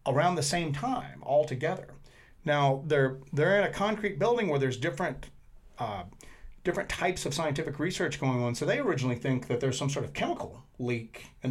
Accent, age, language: American, 40-59, English